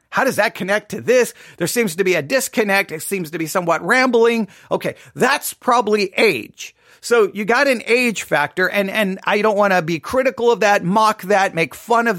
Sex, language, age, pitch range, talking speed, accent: male, English, 40-59, 185-235 Hz, 210 wpm, American